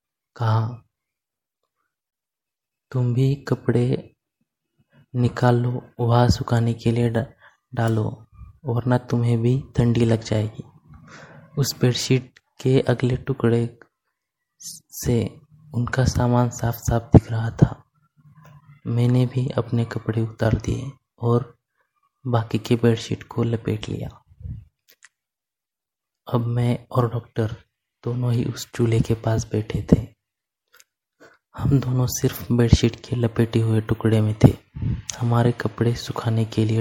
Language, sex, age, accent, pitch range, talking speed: Hindi, male, 20-39, native, 115-125 Hz, 115 wpm